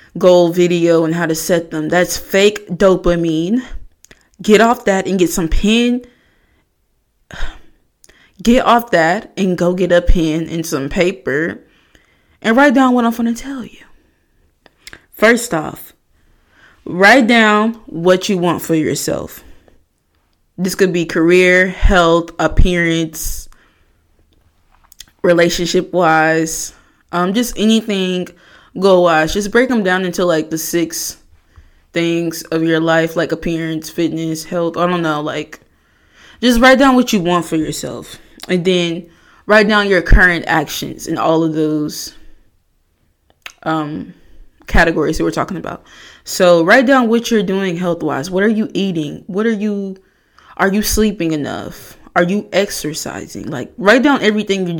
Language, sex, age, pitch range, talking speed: English, female, 20-39, 160-205 Hz, 140 wpm